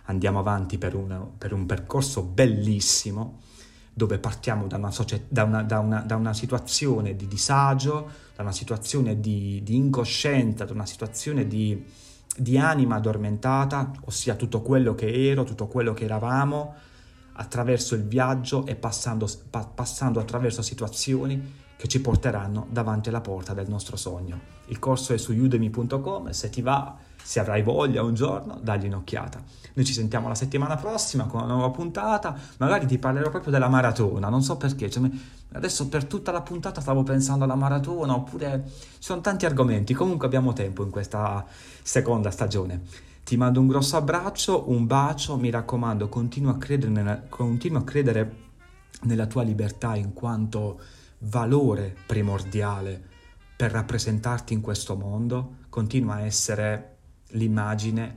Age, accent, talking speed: 30-49, native, 150 wpm